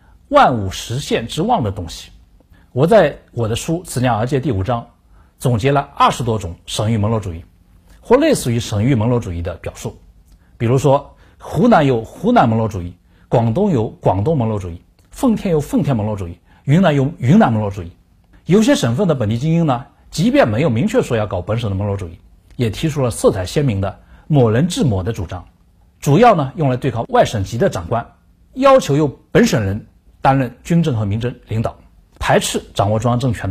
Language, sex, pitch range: Chinese, male, 90-140 Hz